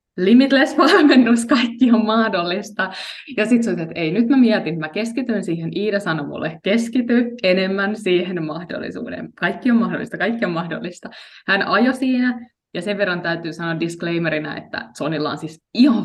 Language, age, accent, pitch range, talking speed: Finnish, 20-39, native, 165-230 Hz, 155 wpm